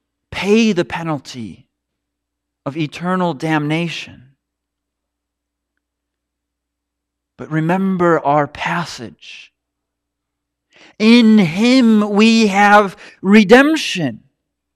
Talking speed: 60 wpm